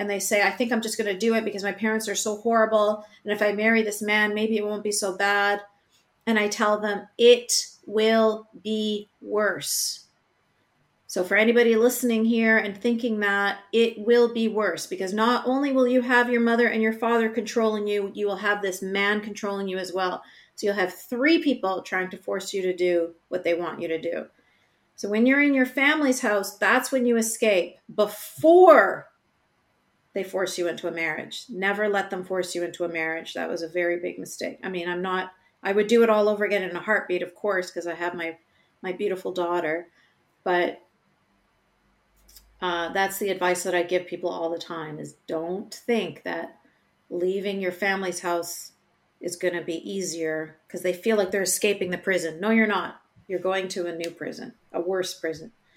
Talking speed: 200 wpm